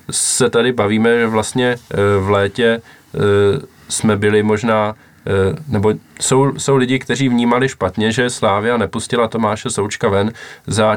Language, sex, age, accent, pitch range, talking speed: Czech, male, 20-39, native, 100-120 Hz, 130 wpm